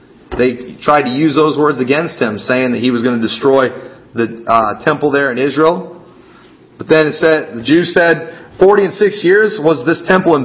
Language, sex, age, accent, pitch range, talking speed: English, male, 40-59, American, 135-175 Hz, 205 wpm